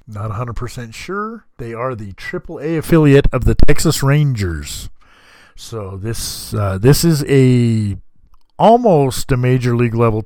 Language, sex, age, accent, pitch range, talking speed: English, male, 50-69, American, 105-140 Hz, 135 wpm